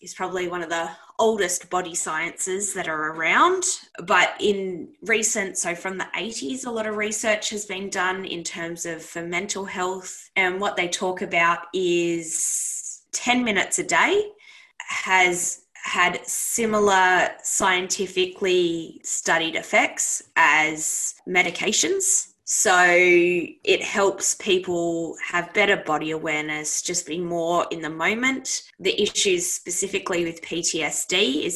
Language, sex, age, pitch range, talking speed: English, female, 20-39, 165-210 Hz, 130 wpm